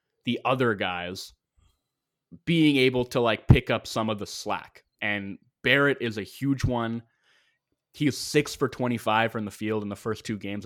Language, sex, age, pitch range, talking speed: English, male, 20-39, 105-130 Hz, 175 wpm